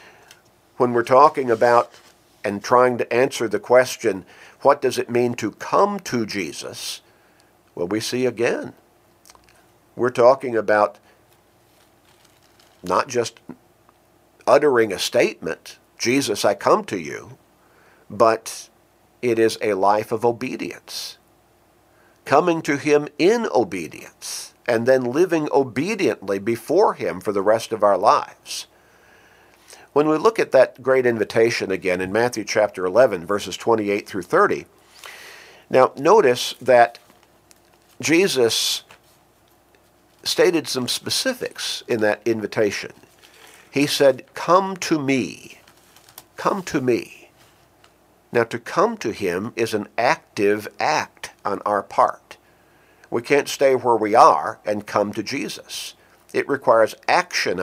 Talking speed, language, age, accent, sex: 125 wpm, English, 50-69, American, male